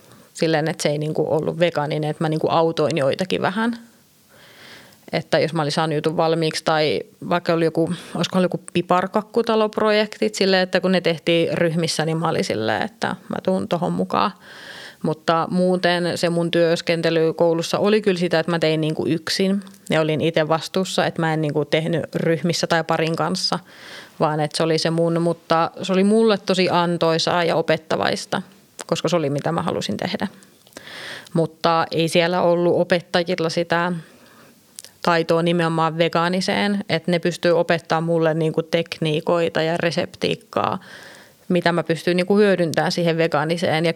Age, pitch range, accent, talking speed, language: 30-49, 160-180 Hz, native, 155 wpm, Finnish